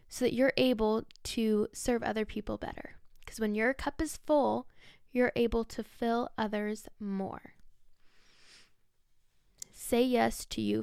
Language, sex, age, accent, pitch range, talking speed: English, female, 10-29, American, 205-255 Hz, 140 wpm